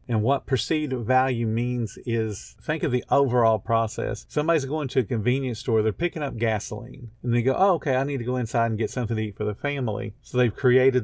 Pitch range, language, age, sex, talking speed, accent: 110-130 Hz, English, 50-69, male, 230 wpm, American